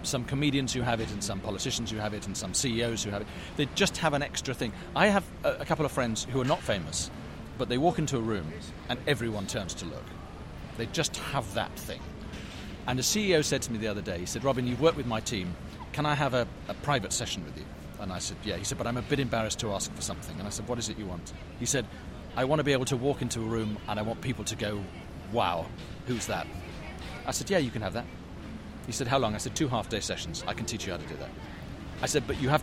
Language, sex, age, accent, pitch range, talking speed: English, male, 40-59, British, 95-130 Hz, 275 wpm